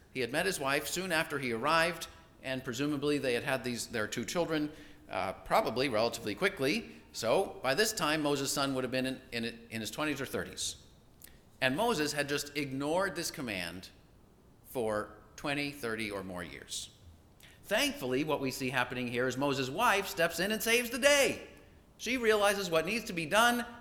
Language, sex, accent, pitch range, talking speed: English, male, American, 105-155 Hz, 180 wpm